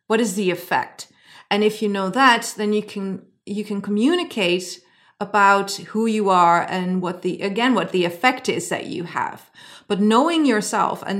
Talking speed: 180 wpm